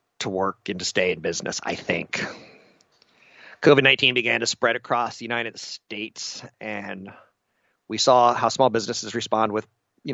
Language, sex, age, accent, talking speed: English, male, 30-49, American, 155 wpm